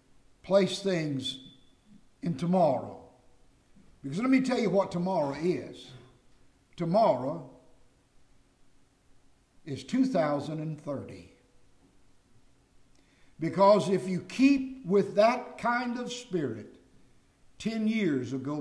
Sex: male